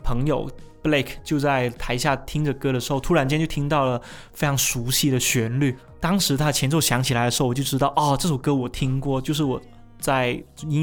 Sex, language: male, Chinese